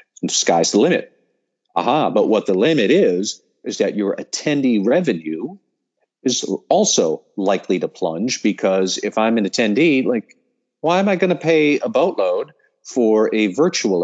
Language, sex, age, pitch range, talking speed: English, male, 40-59, 95-130 Hz, 160 wpm